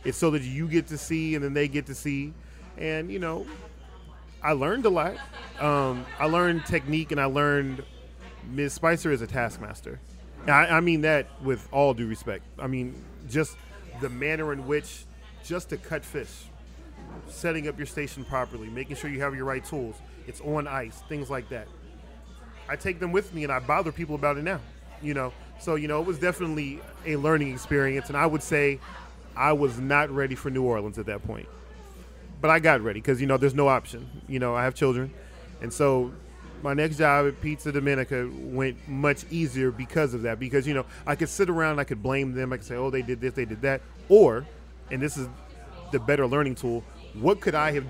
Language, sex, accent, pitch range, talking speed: English, male, American, 115-150 Hz, 210 wpm